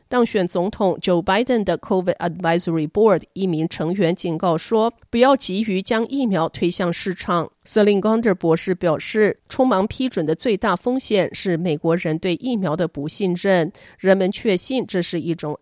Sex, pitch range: female, 170-225 Hz